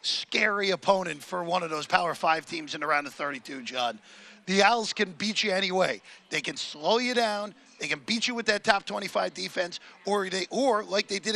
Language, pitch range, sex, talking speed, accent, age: English, 190-230 Hz, male, 215 wpm, American, 40-59